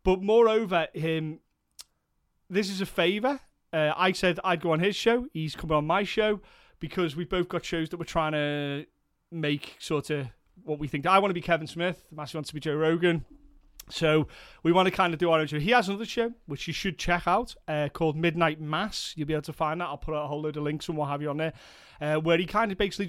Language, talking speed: English, 250 wpm